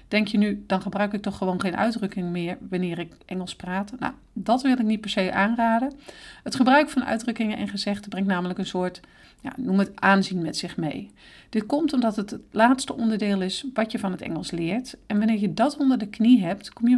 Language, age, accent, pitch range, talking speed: Dutch, 40-59, Dutch, 190-230 Hz, 220 wpm